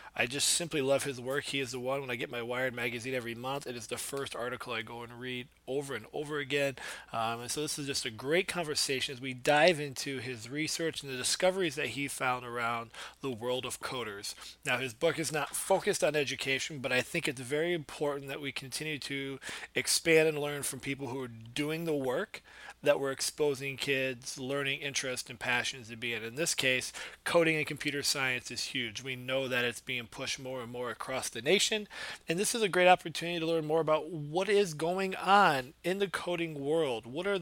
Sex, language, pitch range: male, English, 125-155 Hz